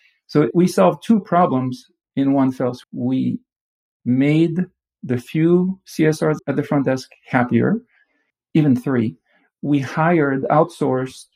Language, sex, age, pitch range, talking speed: English, male, 50-69, 125-155 Hz, 120 wpm